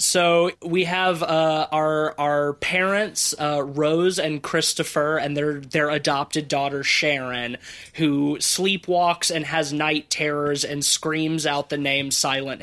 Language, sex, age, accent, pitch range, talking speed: English, male, 20-39, American, 135-160 Hz, 140 wpm